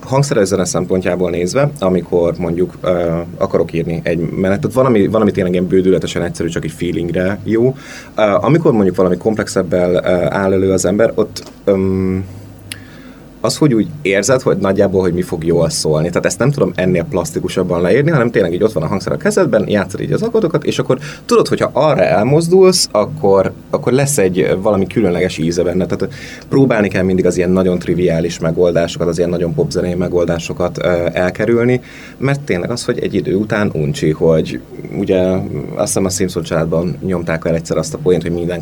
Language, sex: Hungarian, male